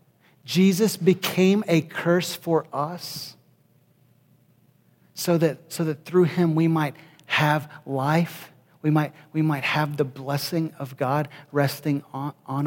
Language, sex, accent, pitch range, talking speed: English, male, American, 140-160 Hz, 135 wpm